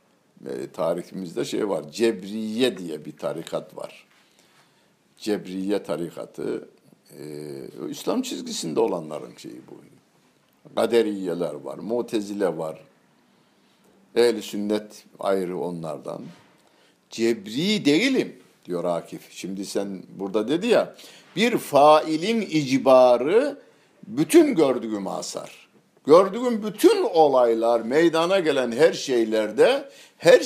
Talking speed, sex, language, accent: 95 wpm, male, Turkish, native